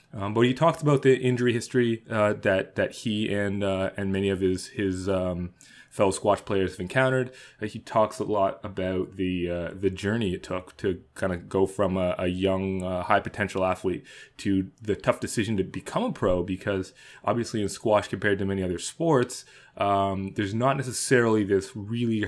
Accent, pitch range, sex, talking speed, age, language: American, 95-110 Hz, male, 190 wpm, 20-39, English